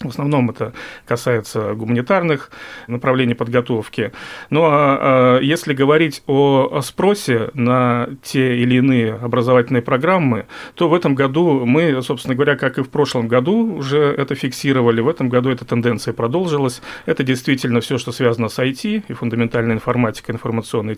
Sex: male